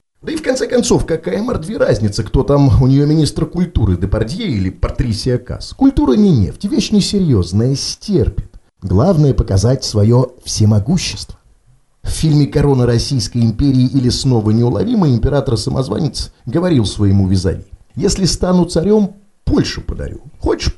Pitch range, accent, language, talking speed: 100-165 Hz, native, Russian, 135 wpm